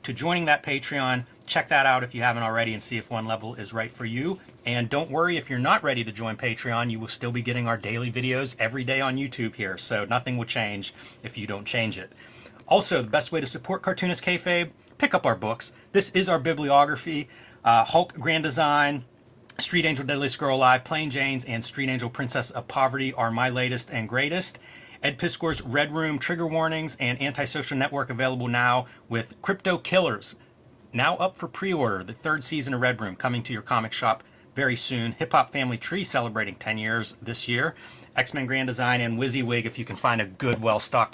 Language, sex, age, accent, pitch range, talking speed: English, male, 30-49, American, 115-150 Hz, 205 wpm